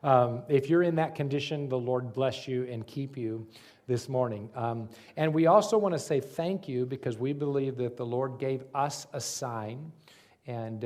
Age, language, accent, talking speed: 40-59, English, American, 195 wpm